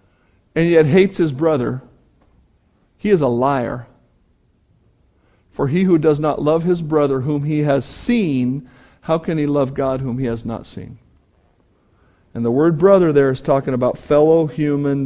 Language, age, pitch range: English, 50-69, 125-165 Hz